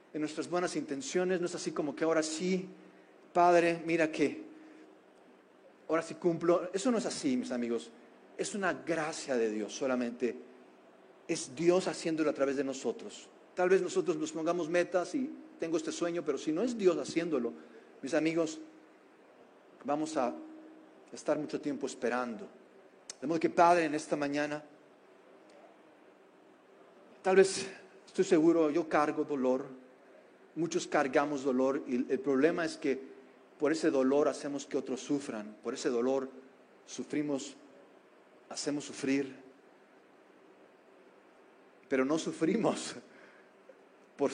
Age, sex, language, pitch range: 40-59, male, Spanish, 140-180 Hz